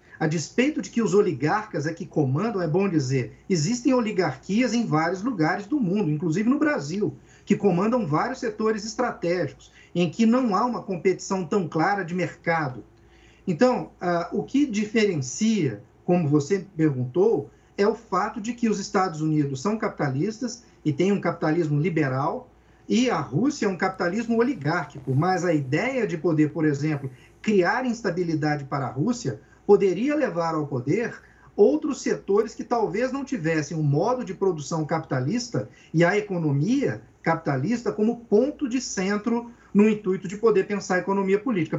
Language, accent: Portuguese, Brazilian